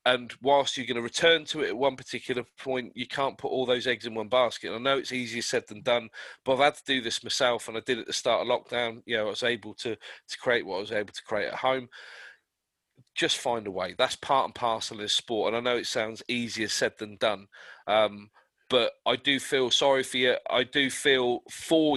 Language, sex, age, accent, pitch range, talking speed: English, male, 40-59, British, 105-130 Hz, 250 wpm